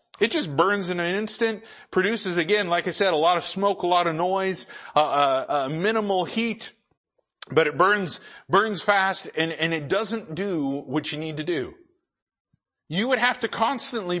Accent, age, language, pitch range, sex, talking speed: American, 50-69, English, 160-215 Hz, male, 185 wpm